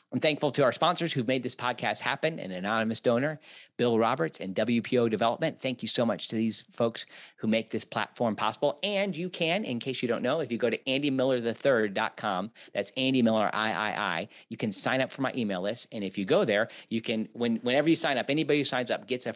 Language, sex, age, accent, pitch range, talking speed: English, male, 40-59, American, 110-140 Hz, 225 wpm